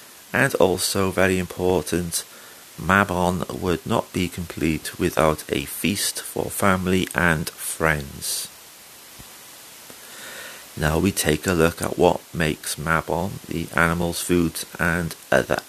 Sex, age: male, 40-59